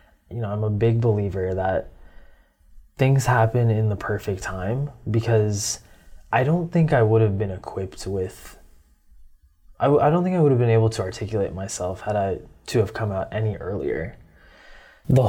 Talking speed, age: 175 wpm, 20-39